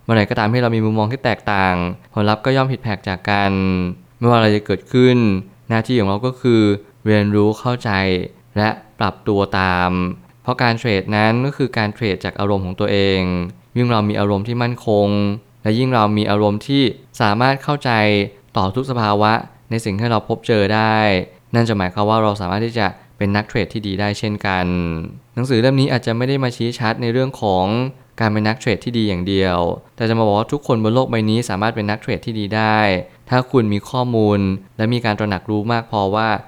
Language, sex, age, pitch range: Thai, male, 20-39, 100-120 Hz